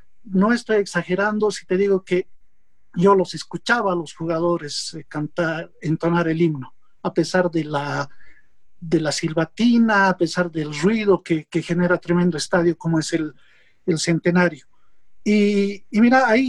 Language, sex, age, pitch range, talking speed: Spanish, male, 50-69, 165-220 Hz, 155 wpm